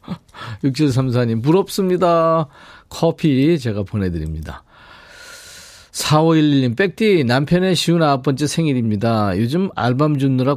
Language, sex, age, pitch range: Korean, male, 40-59, 110-160 Hz